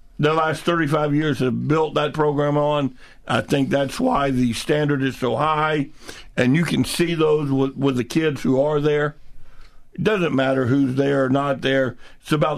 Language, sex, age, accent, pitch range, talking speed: English, male, 50-69, American, 140-180 Hz, 190 wpm